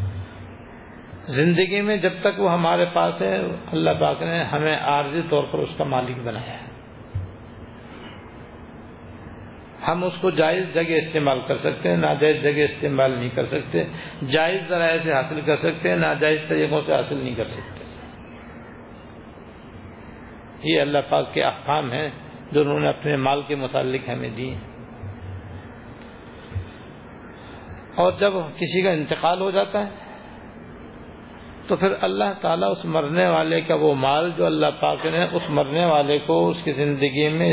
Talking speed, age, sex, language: 150 wpm, 50-69, male, Urdu